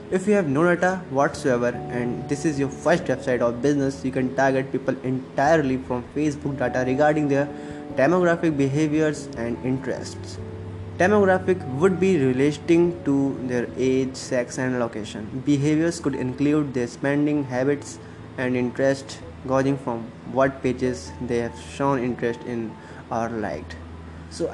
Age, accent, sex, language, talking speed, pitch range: 20-39, Indian, male, English, 140 wpm, 120-145 Hz